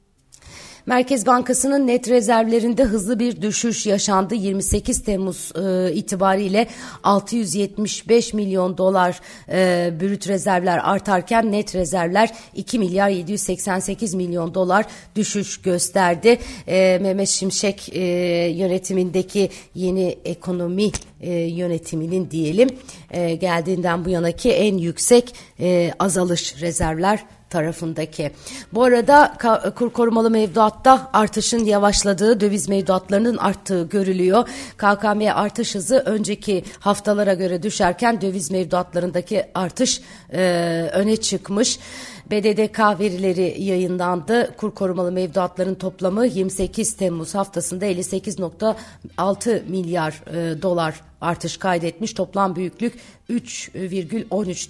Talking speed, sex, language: 100 wpm, female, Turkish